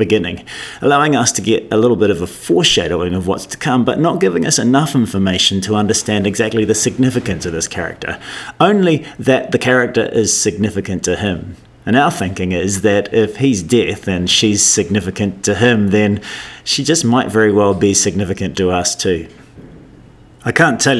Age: 30-49